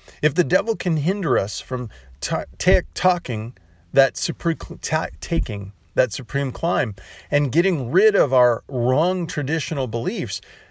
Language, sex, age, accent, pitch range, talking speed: English, male, 40-59, American, 125-180 Hz, 140 wpm